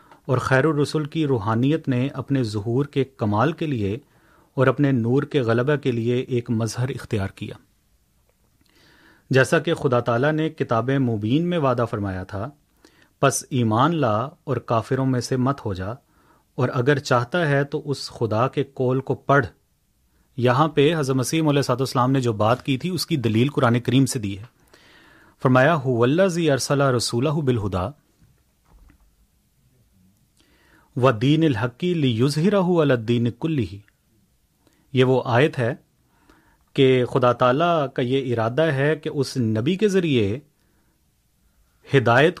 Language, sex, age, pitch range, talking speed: Urdu, male, 30-49, 120-155 Hz, 150 wpm